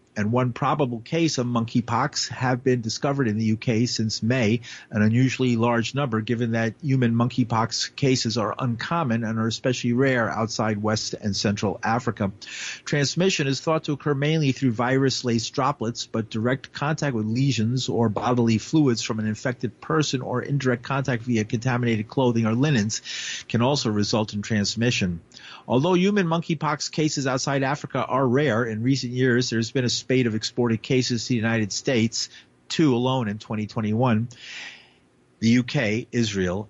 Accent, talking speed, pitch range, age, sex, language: American, 160 wpm, 110-135 Hz, 40-59, male, English